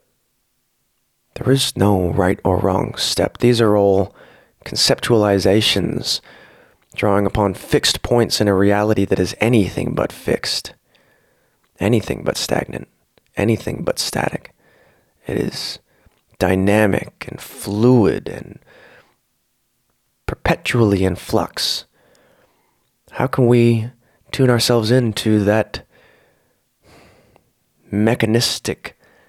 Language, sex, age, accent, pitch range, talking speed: English, male, 30-49, American, 95-115 Hz, 95 wpm